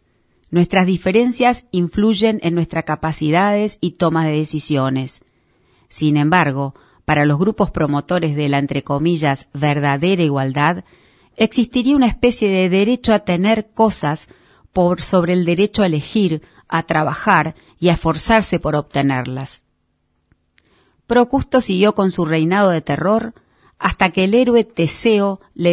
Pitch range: 155-210 Hz